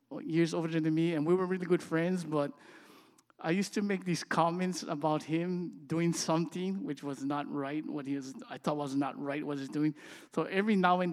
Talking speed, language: 215 wpm, English